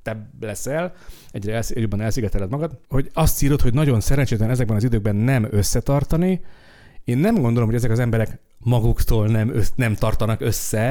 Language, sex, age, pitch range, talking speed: Hungarian, male, 40-59, 100-135 Hz, 160 wpm